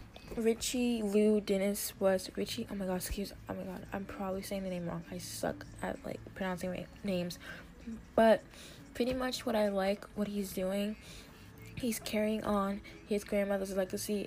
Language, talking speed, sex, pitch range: English, 170 wpm, female, 185-210 Hz